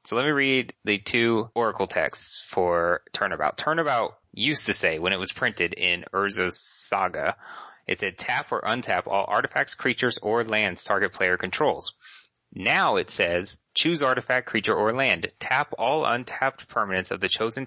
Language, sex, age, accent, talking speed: English, male, 30-49, American, 165 wpm